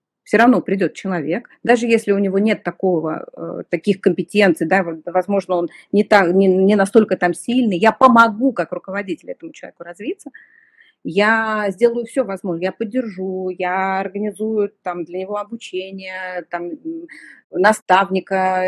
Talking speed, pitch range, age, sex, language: 140 wpm, 185-235 Hz, 30-49, female, Russian